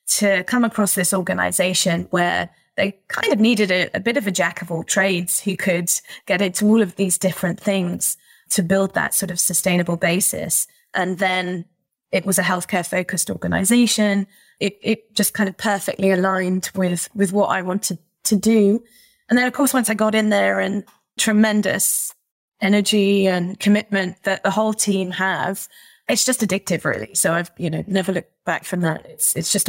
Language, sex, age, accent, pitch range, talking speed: English, female, 20-39, British, 180-210 Hz, 180 wpm